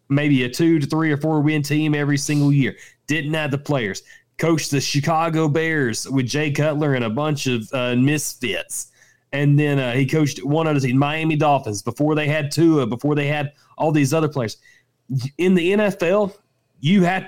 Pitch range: 130-160 Hz